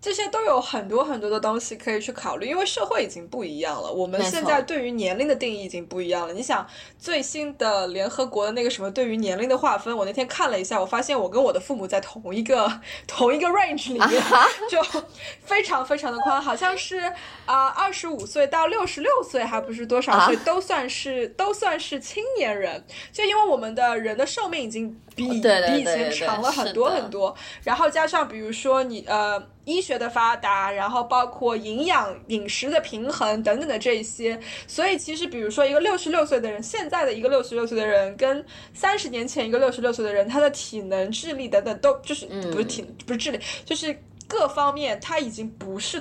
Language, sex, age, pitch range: Chinese, female, 20-39, 220-315 Hz